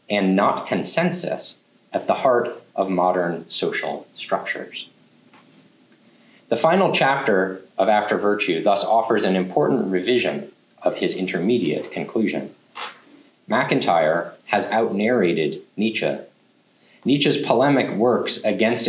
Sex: male